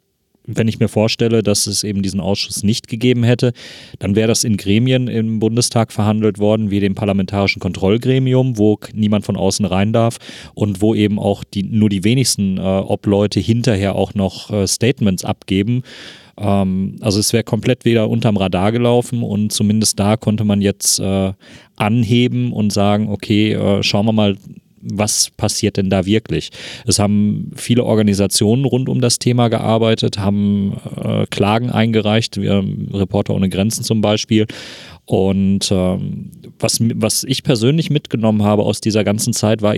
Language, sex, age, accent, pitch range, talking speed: German, male, 30-49, German, 100-115 Hz, 165 wpm